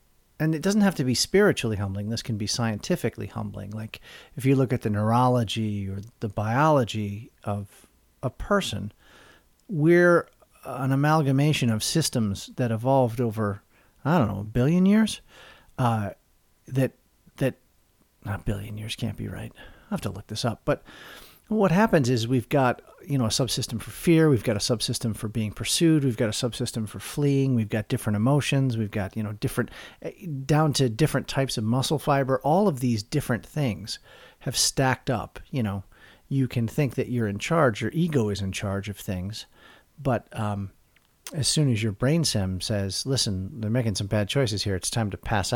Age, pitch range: 40-59, 105-135 Hz